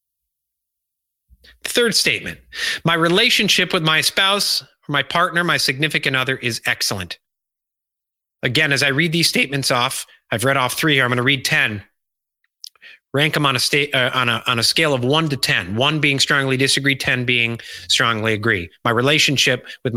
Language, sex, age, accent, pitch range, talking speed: English, male, 30-49, American, 110-155 Hz, 160 wpm